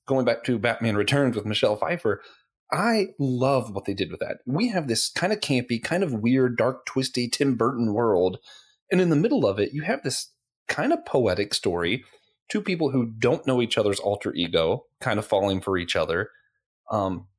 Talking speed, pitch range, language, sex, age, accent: 200 wpm, 105-150 Hz, English, male, 30-49, American